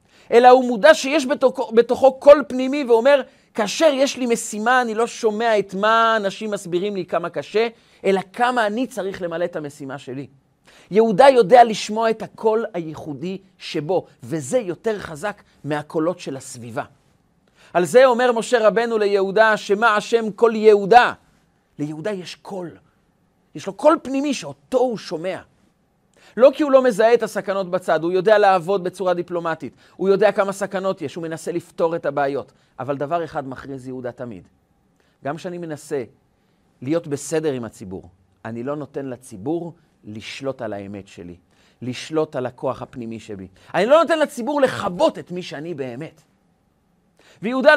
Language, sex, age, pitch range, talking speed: Hebrew, male, 40-59, 150-230 Hz, 155 wpm